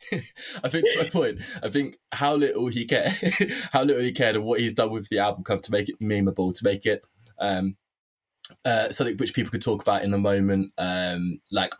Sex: male